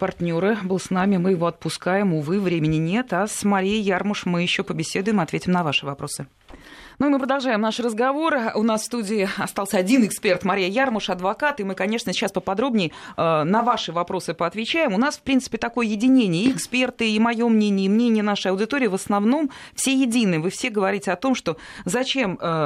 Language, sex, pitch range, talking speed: Russian, female, 165-225 Hz, 190 wpm